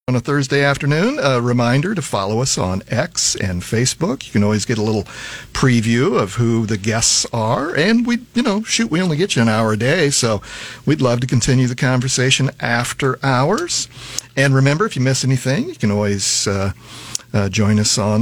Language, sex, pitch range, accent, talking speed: English, male, 110-140 Hz, American, 200 wpm